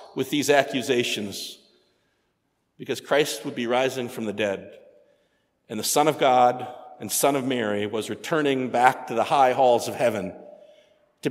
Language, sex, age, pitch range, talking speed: English, male, 50-69, 125-175 Hz, 160 wpm